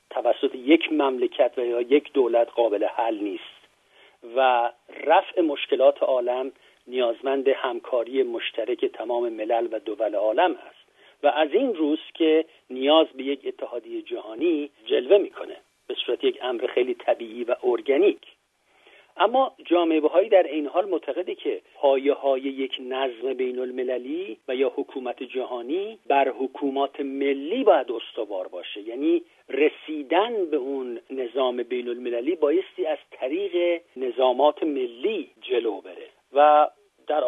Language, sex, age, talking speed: Persian, male, 50-69, 135 wpm